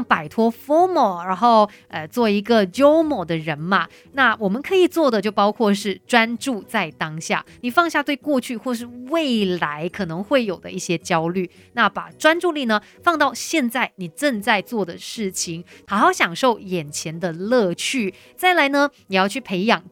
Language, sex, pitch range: Chinese, female, 190-260 Hz